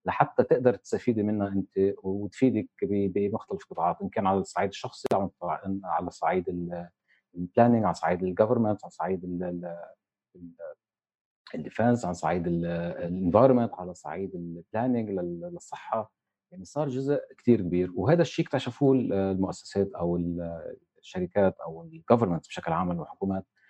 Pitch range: 90-120 Hz